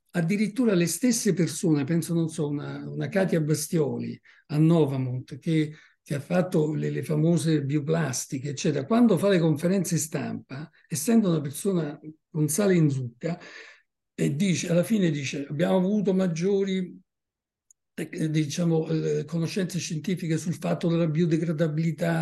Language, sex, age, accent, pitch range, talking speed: Italian, male, 60-79, native, 150-185 Hz, 140 wpm